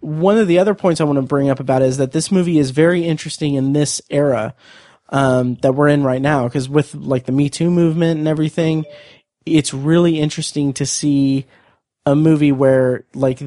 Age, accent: 30-49, American